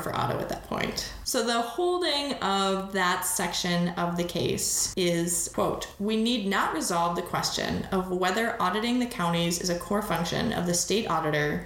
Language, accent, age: English, American, 20-39